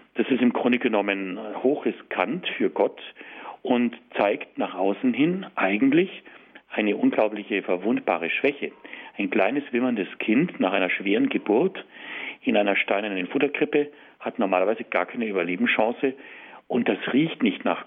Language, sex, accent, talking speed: German, male, German, 140 wpm